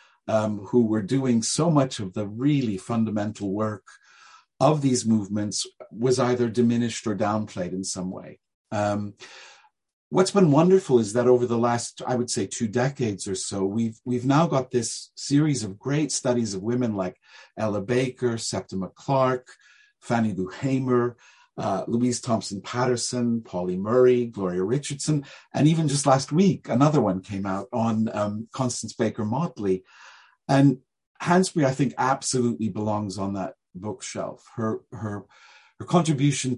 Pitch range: 105-130 Hz